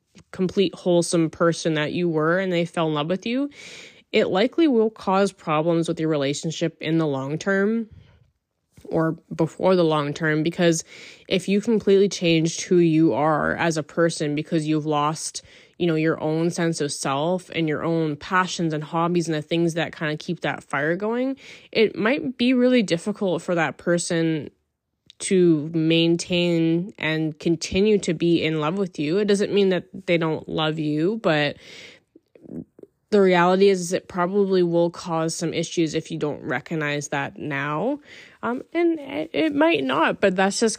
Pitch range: 160-190 Hz